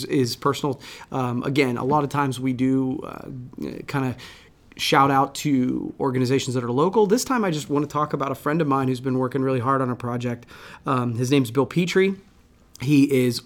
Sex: male